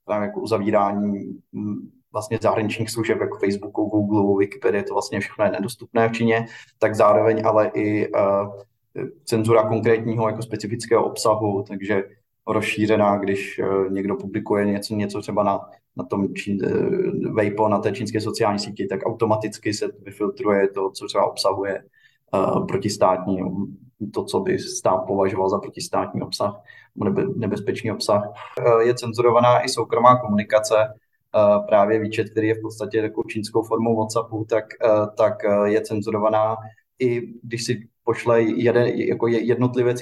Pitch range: 105-115 Hz